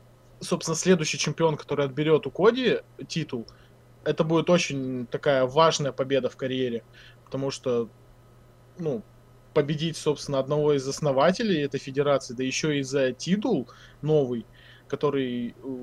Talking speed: 125 wpm